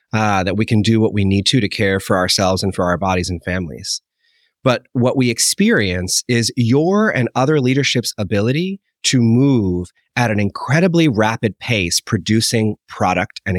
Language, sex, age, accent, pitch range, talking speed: English, male, 30-49, American, 100-140 Hz, 170 wpm